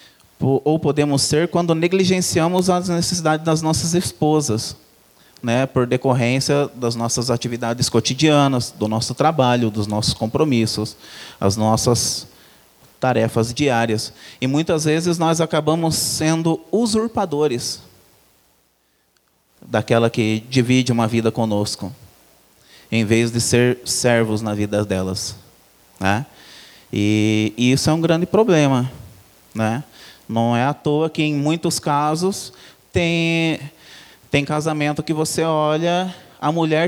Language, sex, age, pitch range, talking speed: Portuguese, male, 20-39, 115-155 Hz, 115 wpm